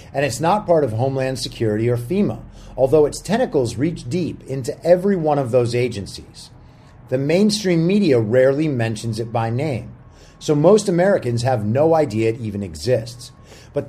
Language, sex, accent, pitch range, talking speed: English, male, American, 120-165 Hz, 165 wpm